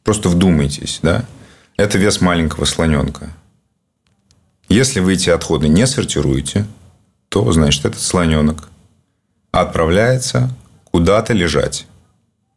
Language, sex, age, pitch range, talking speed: Russian, male, 30-49, 85-110 Hz, 95 wpm